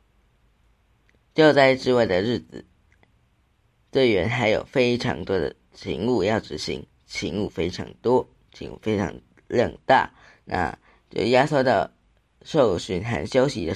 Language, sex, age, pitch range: Chinese, female, 20-39, 95-130 Hz